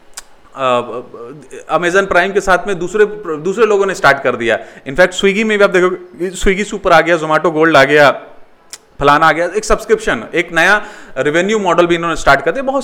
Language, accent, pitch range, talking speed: Hindi, native, 150-210 Hz, 195 wpm